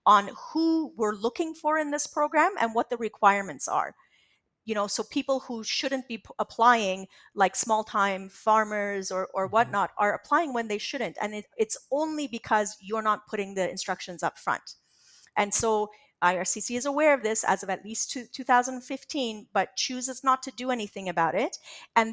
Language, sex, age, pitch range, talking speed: English, female, 30-49, 205-265 Hz, 175 wpm